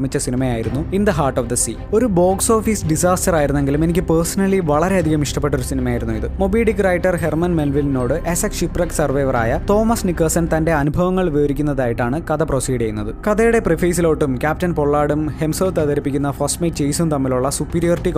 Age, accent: 20-39, native